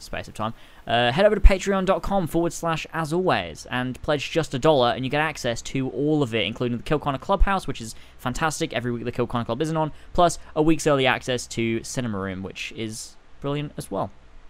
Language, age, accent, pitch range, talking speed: English, 10-29, British, 115-155 Hz, 215 wpm